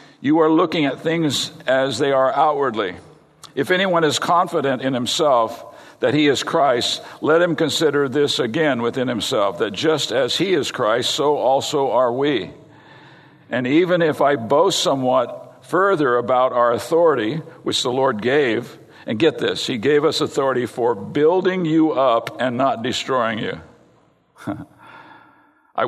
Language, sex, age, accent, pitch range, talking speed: English, male, 50-69, American, 125-160 Hz, 155 wpm